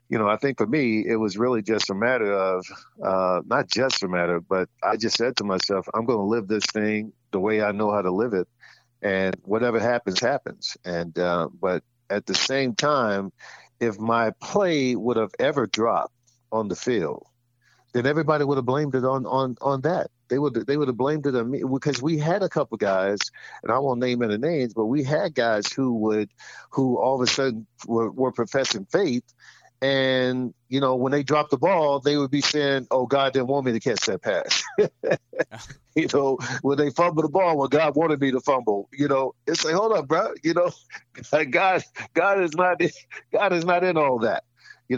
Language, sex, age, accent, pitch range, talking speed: English, male, 50-69, American, 110-140 Hz, 215 wpm